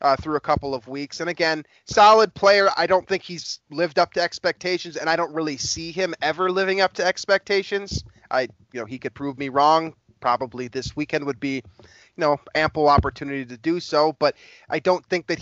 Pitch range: 135-175 Hz